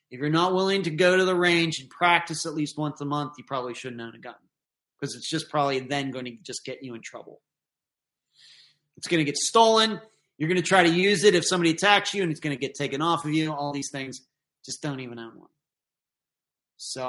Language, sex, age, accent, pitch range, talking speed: English, male, 30-49, American, 140-185 Hz, 240 wpm